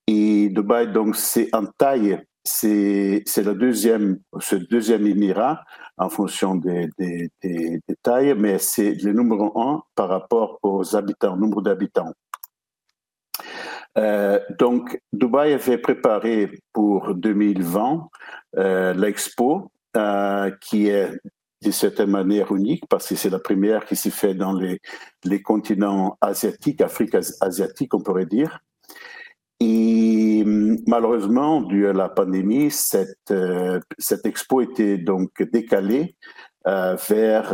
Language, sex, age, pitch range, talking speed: French, male, 60-79, 95-110 Hz, 130 wpm